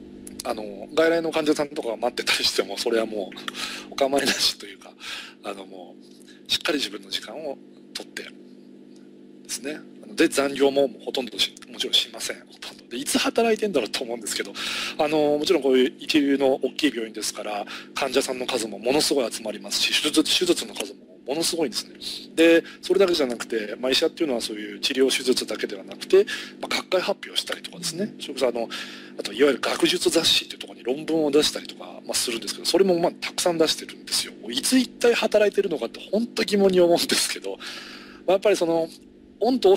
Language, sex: Japanese, male